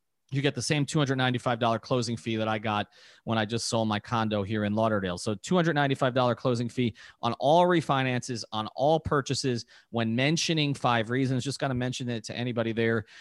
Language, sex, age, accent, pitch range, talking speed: English, male, 30-49, American, 115-140 Hz, 185 wpm